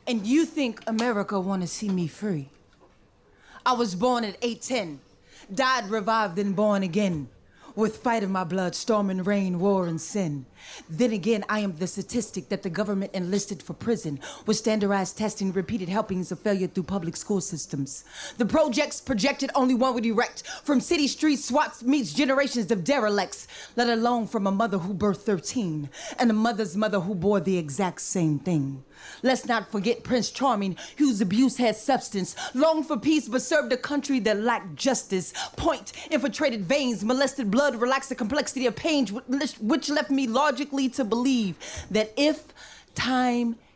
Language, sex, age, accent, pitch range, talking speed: English, female, 30-49, American, 190-255 Hz, 170 wpm